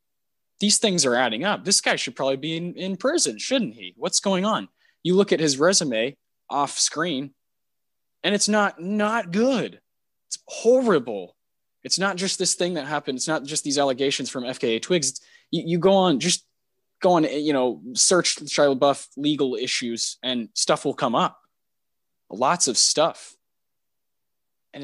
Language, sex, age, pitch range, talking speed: English, male, 20-39, 130-180 Hz, 170 wpm